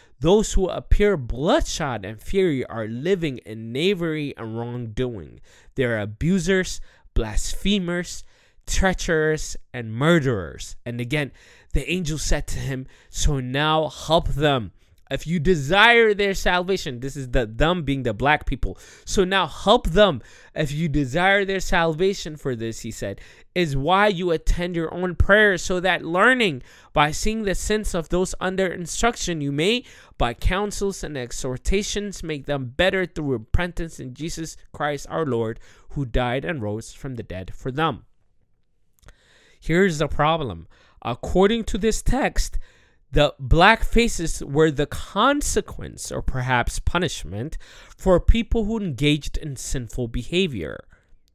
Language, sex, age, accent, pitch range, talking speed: English, male, 20-39, American, 125-185 Hz, 145 wpm